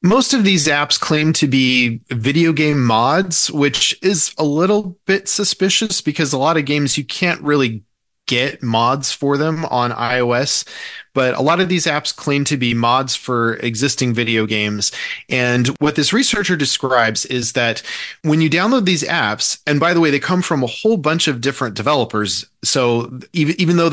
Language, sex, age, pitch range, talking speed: English, male, 30-49, 120-155 Hz, 185 wpm